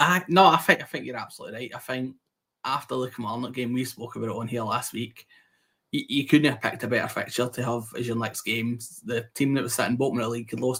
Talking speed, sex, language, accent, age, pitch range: 265 wpm, male, English, British, 20-39, 110-125 Hz